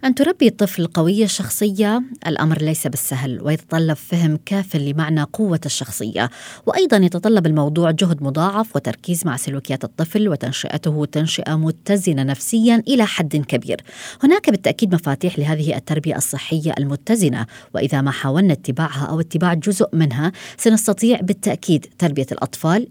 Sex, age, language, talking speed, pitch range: female, 20-39, Arabic, 130 wpm, 145-210 Hz